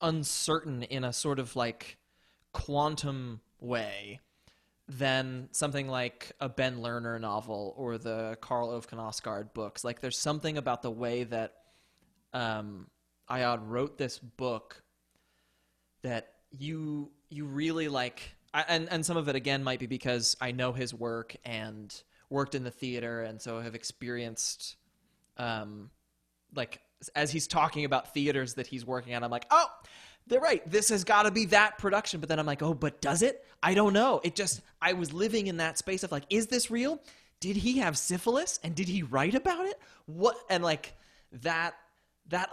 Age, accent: 20-39, American